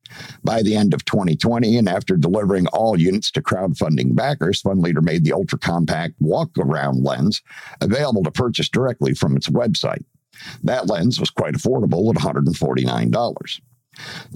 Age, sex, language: 50-69, male, English